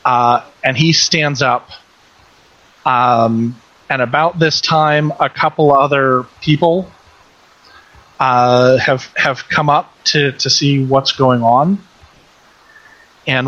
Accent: American